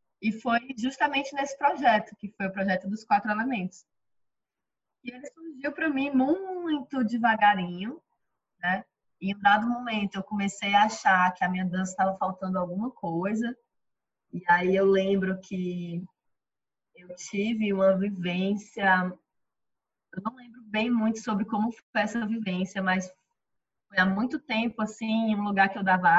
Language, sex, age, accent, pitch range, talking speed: Portuguese, female, 20-39, Brazilian, 185-225 Hz, 155 wpm